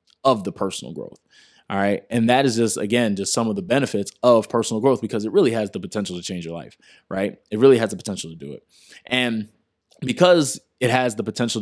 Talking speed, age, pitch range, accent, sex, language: 225 wpm, 20-39, 105-130 Hz, American, male, English